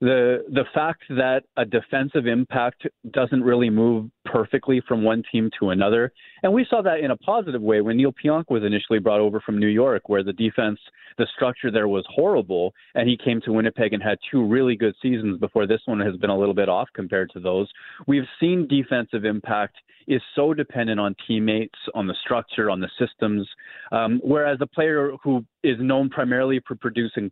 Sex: male